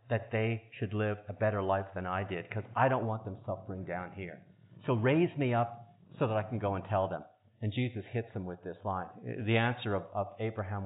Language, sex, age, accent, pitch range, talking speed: English, male, 50-69, American, 100-130 Hz, 230 wpm